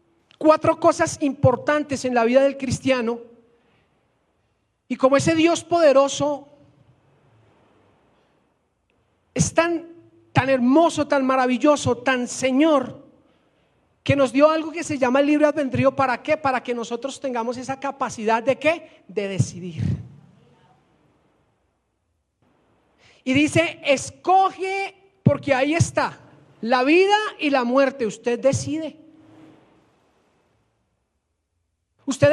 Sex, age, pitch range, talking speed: male, 40-59, 255-315 Hz, 105 wpm